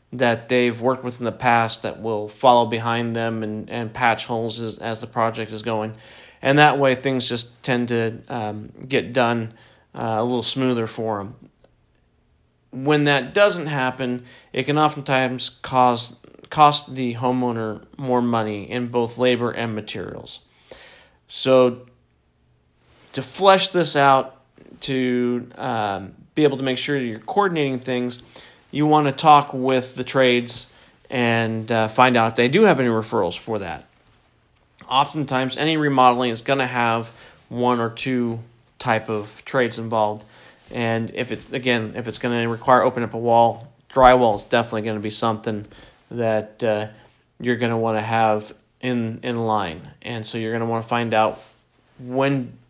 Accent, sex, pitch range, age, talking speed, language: American, male, 110-130 Hz, 40-59, 165 wpm, English